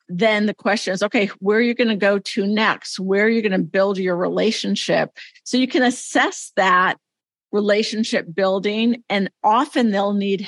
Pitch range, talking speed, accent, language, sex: 195-220 Hz, 185 wpm, American, English, female